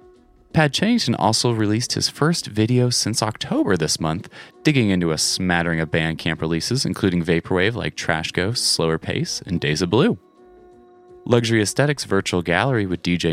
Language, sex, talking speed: English, male, 155 wpm